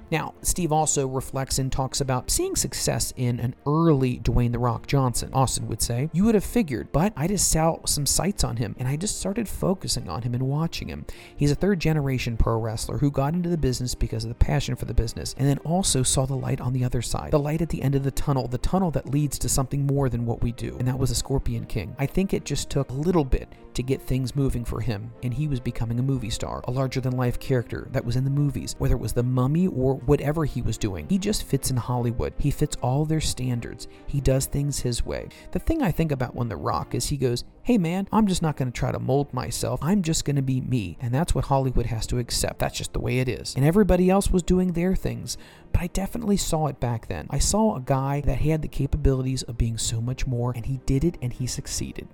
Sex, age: male, 40-59